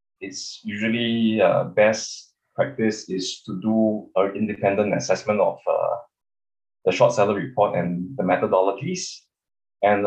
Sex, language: male, English